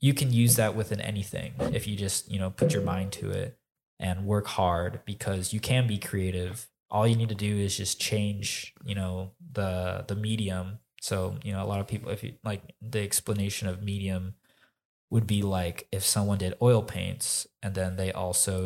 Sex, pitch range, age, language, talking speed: male, 95-115 Hz, 20-39, English, 205 wpm